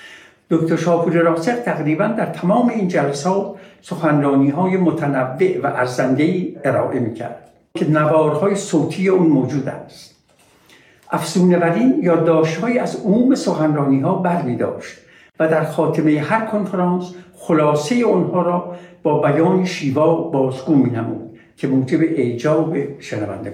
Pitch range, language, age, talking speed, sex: 145-185 Hz, Persian, 60-79, 115 wpm, male